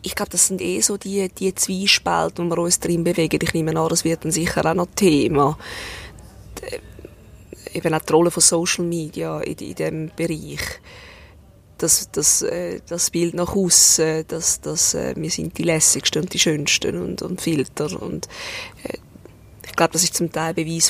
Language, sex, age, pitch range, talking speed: German, female, 20-39, 155-175 Hz, 180 wpm